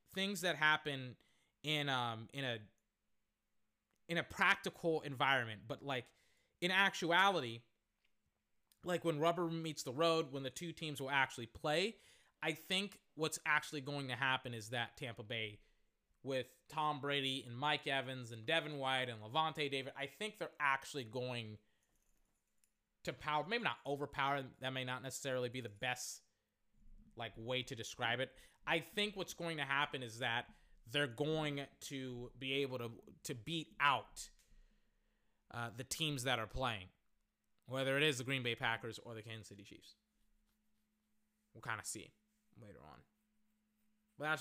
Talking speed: 155 wpm